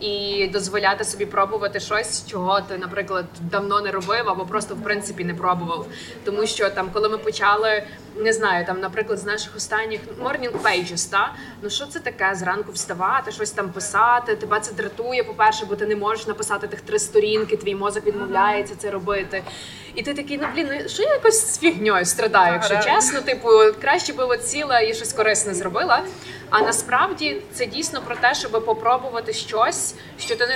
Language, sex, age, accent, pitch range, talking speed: Ukrainian, female, 20-39, native, 205-240 Hz, 180 wpm